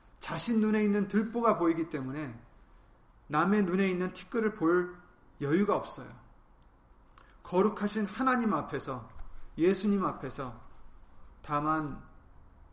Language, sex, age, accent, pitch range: Korean, male, 30-49, native, 130-185 Hz